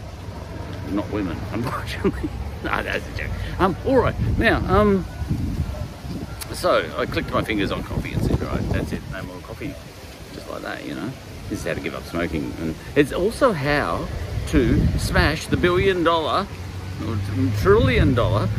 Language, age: English, 50-69